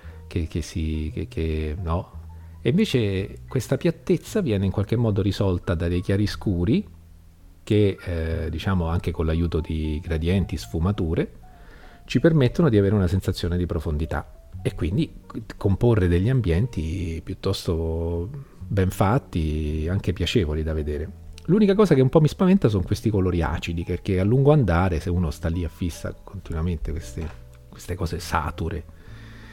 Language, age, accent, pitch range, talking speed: Italian, 40-59, native, 80-105 Hz, 150 wpm